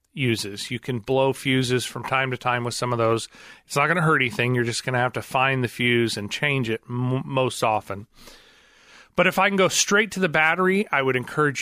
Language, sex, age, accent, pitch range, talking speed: English, male, 40-59, American, 120-155 Hz, 230 wpm